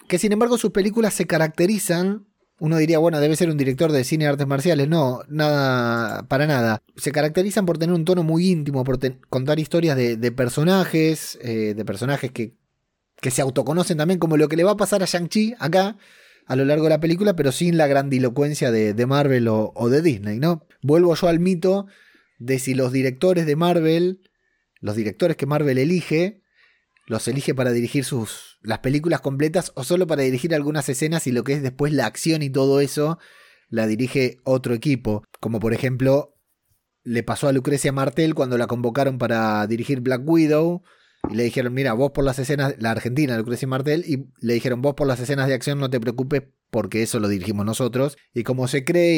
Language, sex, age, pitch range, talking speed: Spanish, male, 30-49, 130-165 Hz, 205 wpm